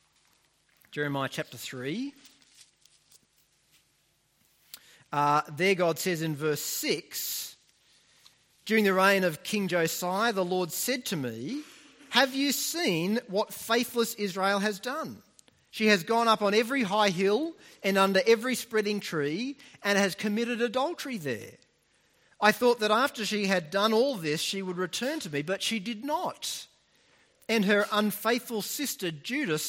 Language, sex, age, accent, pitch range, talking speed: English, male, 40-59, Australian, 180-235 Hz, 140 wpm